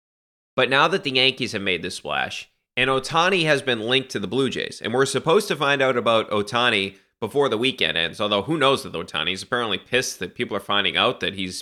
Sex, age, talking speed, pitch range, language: male, 30-49, 230 wpm, 110-140 Hz, English